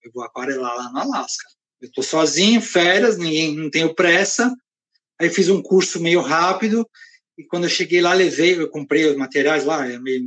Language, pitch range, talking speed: Portuguese, 155-225 Hz, 185 wpm